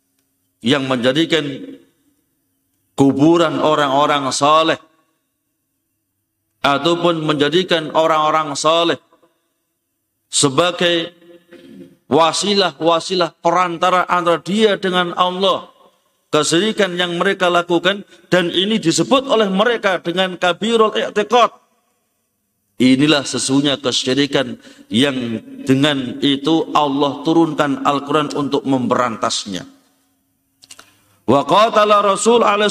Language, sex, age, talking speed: Indonesian, male, 50-69, 75 wpm